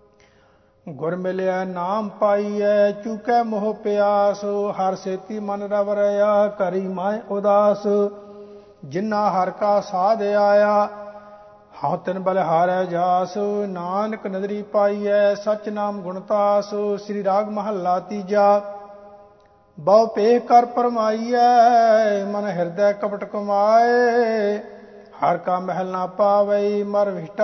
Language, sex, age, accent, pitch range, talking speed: English, male, 50-69, Indian, 190-210 Hz, 50 wpm